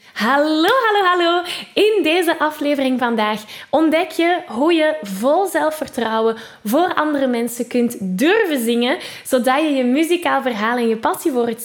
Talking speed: 150 wpm